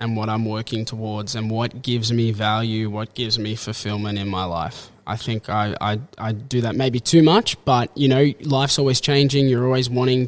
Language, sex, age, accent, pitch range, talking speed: English, male, 20-39, Australian, 110-130 Hz, 210 wpm